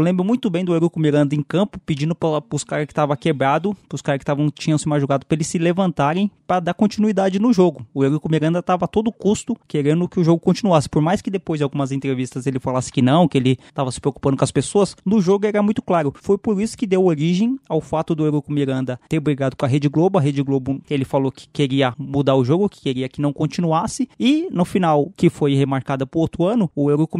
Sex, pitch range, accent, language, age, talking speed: male, 145-195 Hz, Brazilian, Portuguese, 20-39, 250 wpm